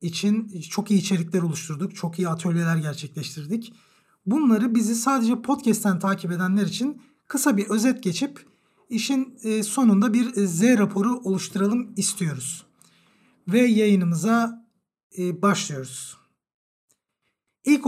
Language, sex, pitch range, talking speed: Turkish, male, 180-225 Hz, 105 wpm